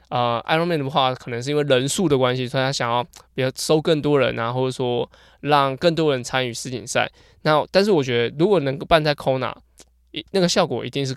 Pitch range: 125-155 Hz